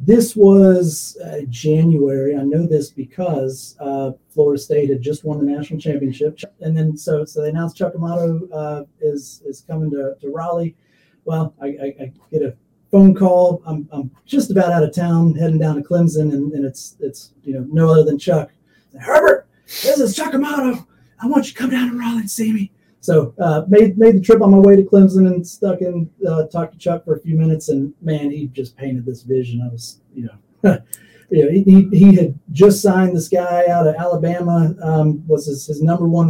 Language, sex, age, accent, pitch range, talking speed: English, male, 30-49, American, 140-175 Hz, 215 wpm